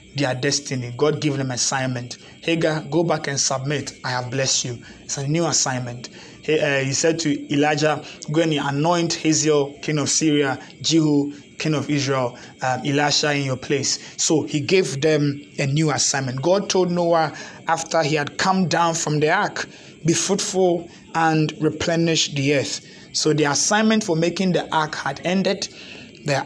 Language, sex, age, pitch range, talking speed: English, male, 20-39, 140-170 Hz, 170 wpm